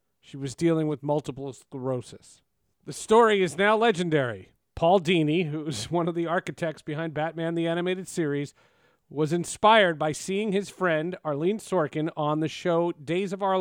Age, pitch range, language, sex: 40-59, 150-190 Hz, English, male